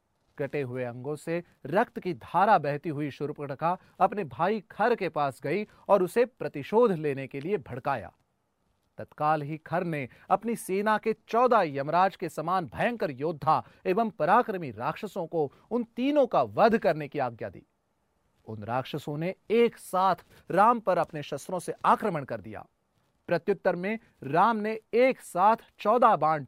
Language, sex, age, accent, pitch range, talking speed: Hindi, male, 30-49, native, 145-200 Hz, 155 wpm